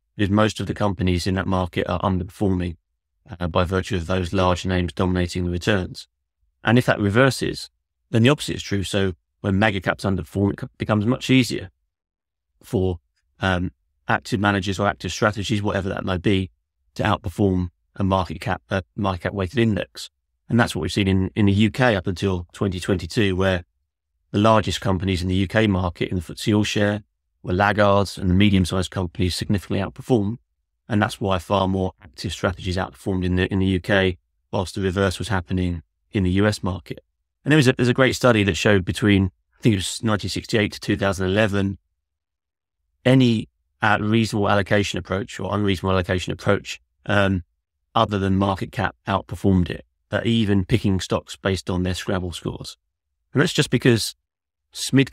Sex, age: male, 30-49